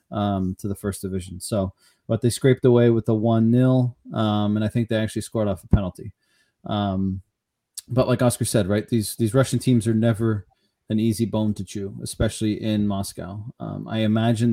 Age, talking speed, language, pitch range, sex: 30-49, 195 wpm, English, 110-125 Hz, male